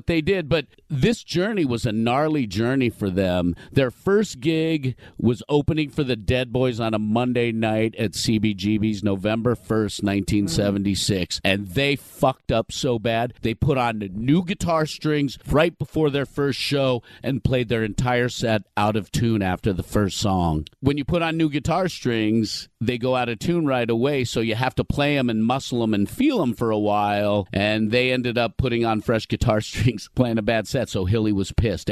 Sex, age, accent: male, 50-69, American